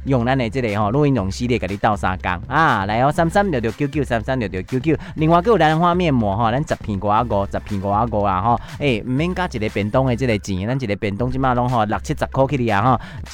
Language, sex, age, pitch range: Chinese, male, 30-49, 105-135 Hz